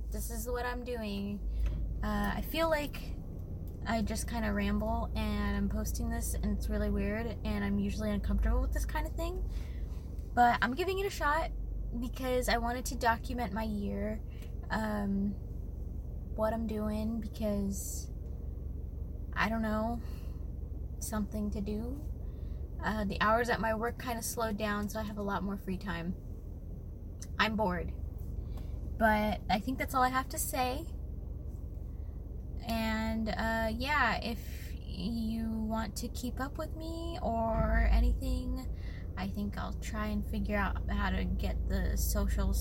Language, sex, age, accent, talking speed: English, female, 20-39, American, 155 wpm